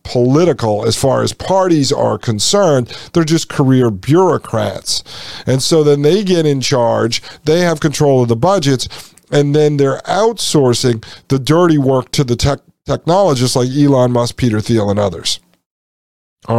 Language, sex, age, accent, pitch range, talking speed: English, male, 50-69, American, 120-165 Hz, 150 wpm